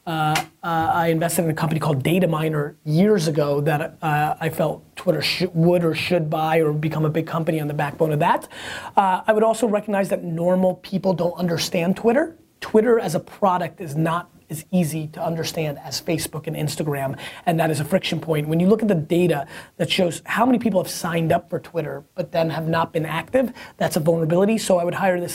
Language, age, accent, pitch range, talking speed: English, 30-49, American, 165-190 Hz, 215 wpm